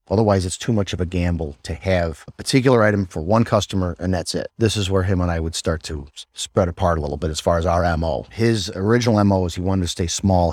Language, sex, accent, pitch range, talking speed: English, male, American, 85-100 Hz, 260 wpm